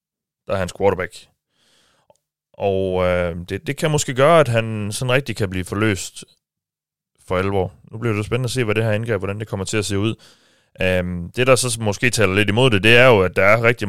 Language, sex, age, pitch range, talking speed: Danish, male, 30-49, 95-115 Hz, 230 wpm